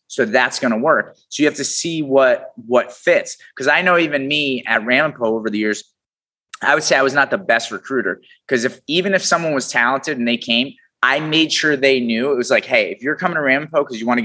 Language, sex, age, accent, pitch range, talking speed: English, male, 30-49, American, 120-160 Hz, 255 wpm